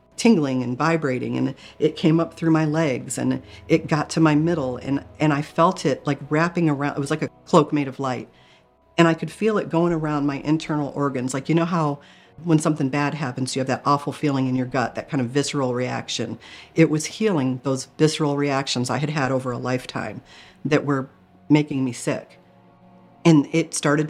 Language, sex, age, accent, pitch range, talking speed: English, female, 50-69, American, 135-165 Hz, 205 wpm